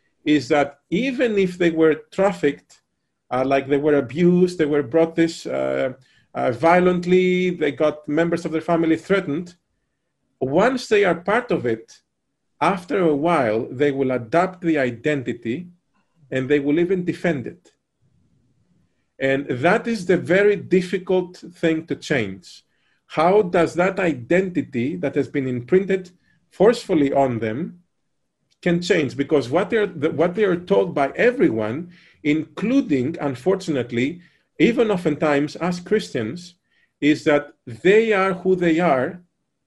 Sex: male